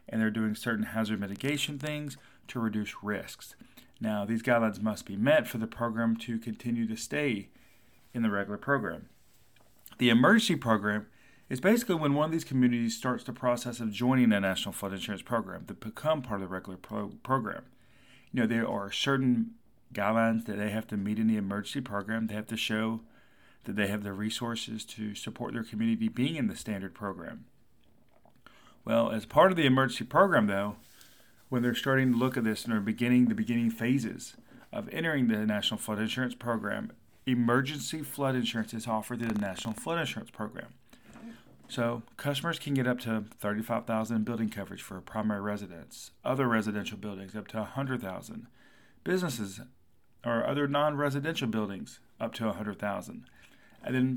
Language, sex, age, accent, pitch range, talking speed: English, male, 40-59, American, 110-130 Hz, 175 wpm